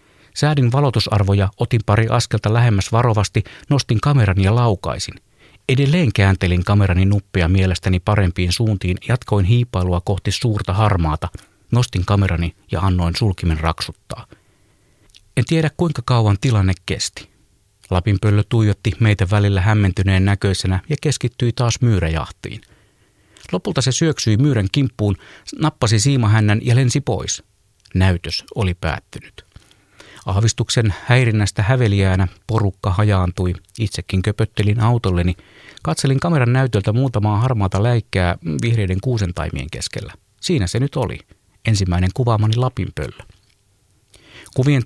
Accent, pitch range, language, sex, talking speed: native, 95-115 Hz, Finnish, male, 115 wpm